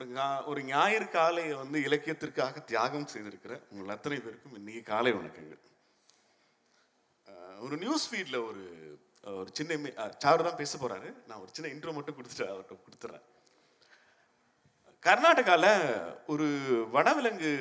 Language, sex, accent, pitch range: Tamil, male, native, 145-240 Hz